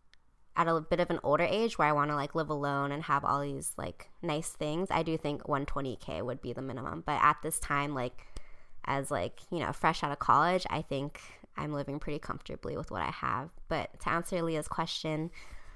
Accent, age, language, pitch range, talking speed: American, 20-39, English, 150-180 Hz, 215 wpm